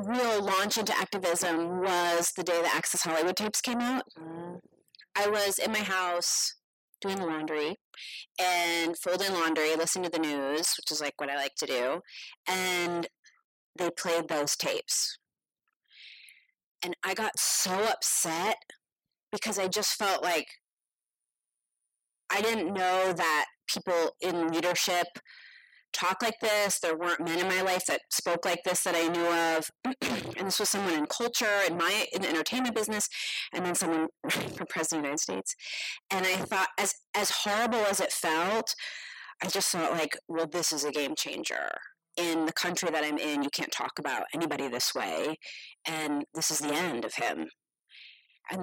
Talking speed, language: 170 wpm, English